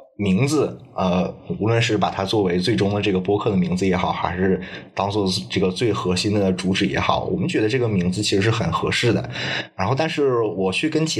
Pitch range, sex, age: 95-115 Hz, male, 20-39